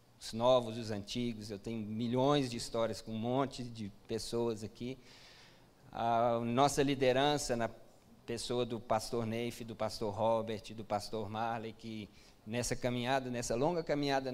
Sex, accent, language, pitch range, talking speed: male, Brazilian, Portuguese, 110-125 Hz, 145 wpm